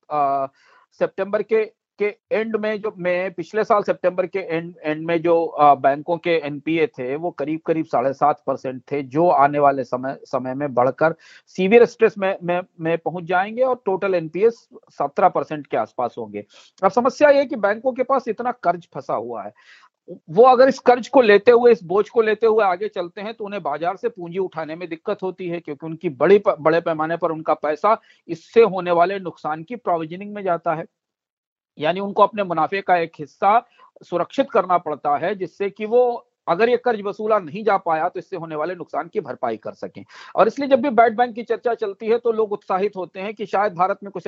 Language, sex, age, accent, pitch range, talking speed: Hindi, male, 40-59, native, 165-220 Hz, 205 wpm